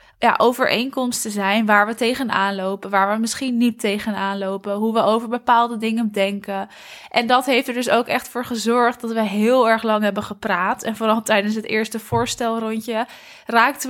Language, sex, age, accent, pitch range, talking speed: Dutch, female, 20-39, Dutch, 205-235 Hz, 180 wpm